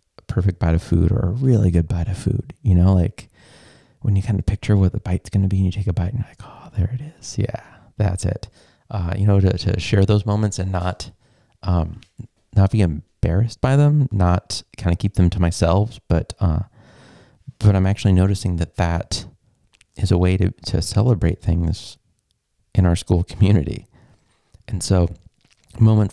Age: 30-49